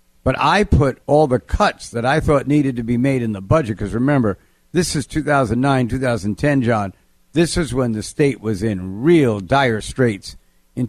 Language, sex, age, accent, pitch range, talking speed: English, male, 60-79, American, 110-155 Hz, 185 wpm